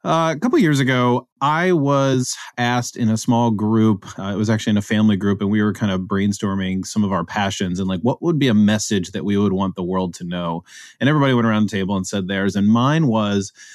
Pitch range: 105-135 Hz